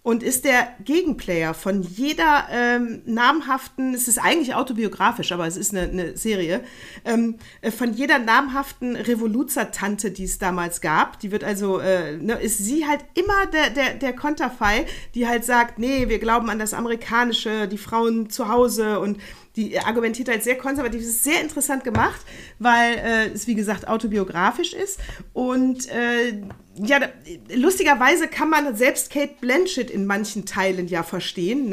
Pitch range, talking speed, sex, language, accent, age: 200-255 Hz, 160 wpm, female, German, German, 40-59